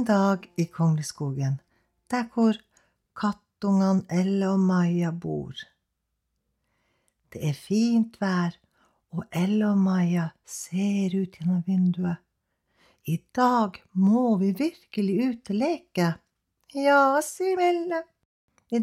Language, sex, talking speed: Danish, female, 100 wpm